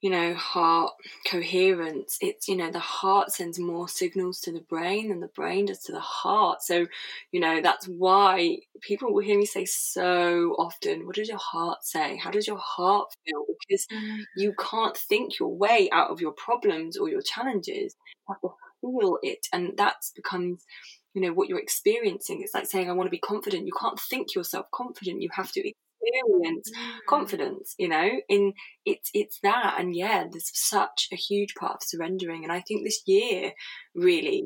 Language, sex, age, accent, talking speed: English, female, 20-39, British, 190 wpm